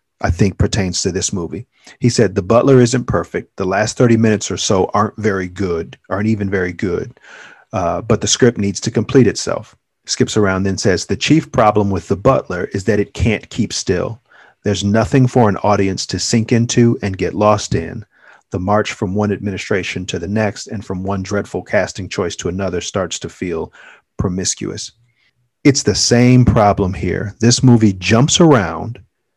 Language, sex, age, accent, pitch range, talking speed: English, male, 40-59, American, 100-120 Hz, 185 wpm